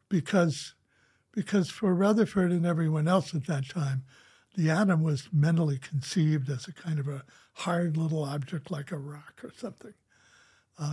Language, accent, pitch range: English, American, 140-175 Hz